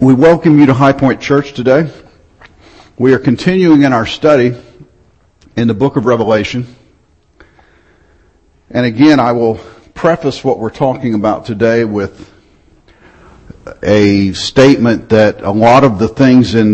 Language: English